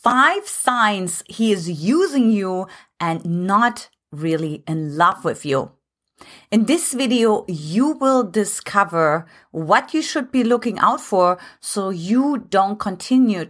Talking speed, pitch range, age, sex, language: 135 wpm, 180-255 Hz, 30-49, female, English